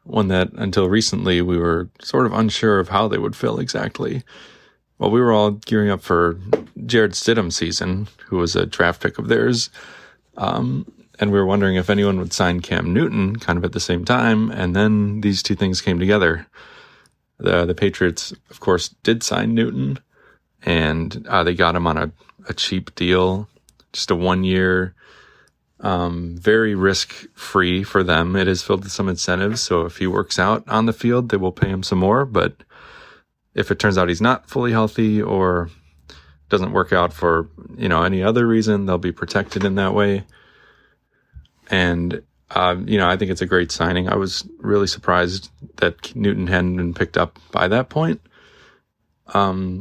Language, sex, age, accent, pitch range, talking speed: English, male, 30-49, American, 90-105 Hz, 180 wpm